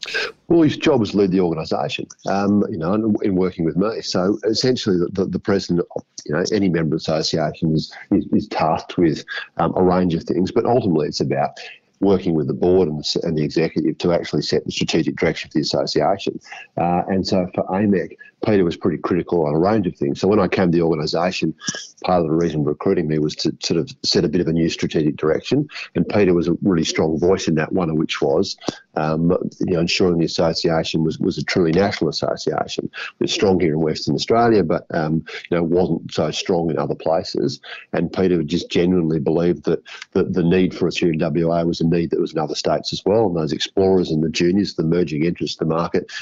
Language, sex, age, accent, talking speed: English, male, 50-69, Australian, 225 wpm